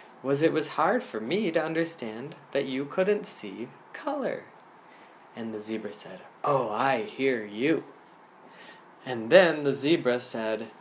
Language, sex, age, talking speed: English, male, 20-39, 145 wpm